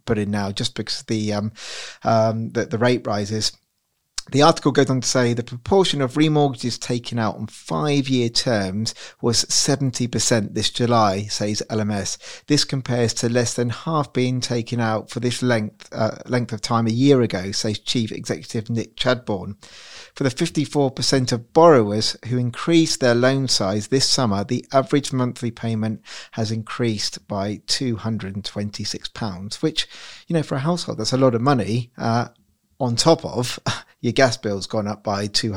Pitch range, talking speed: 110-130 Hz, 165 wpm